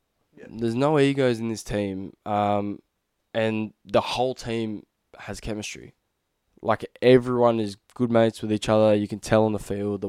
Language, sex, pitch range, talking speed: English, male, 105-115 Hz, 165 wpm